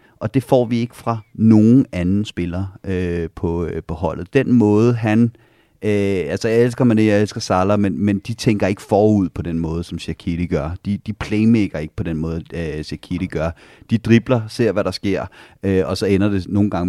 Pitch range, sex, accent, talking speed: 90-110 Hz, male, native, 210 wpm